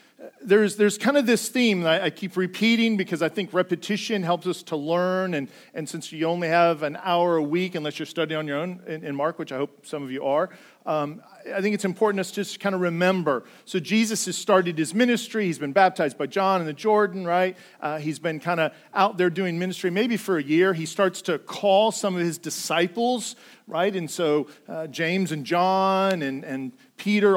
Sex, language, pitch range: male, English, 160-205 Hz